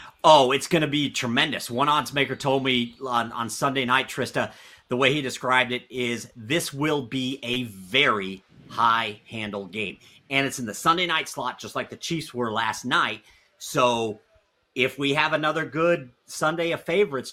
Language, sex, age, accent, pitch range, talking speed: English, male, 40-59, American, 120-145 Hz, 180 wpm